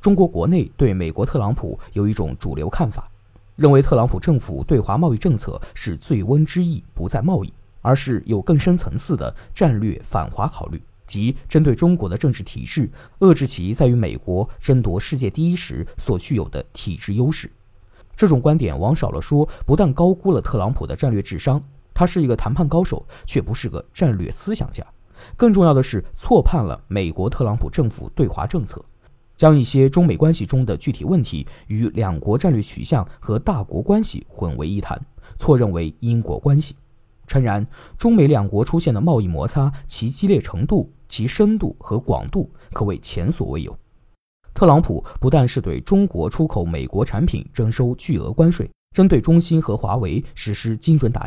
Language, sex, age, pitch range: Chinese, male, 20-39, 105-160 Hz